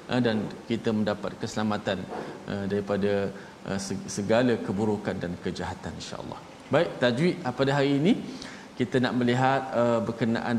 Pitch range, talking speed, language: 110-145 Hz, 110 wpm, Malayalam